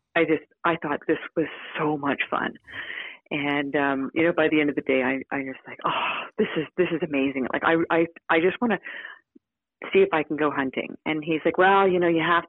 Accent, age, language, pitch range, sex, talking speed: American, 40-59, English, 155-205 Hz, female, 240 wpm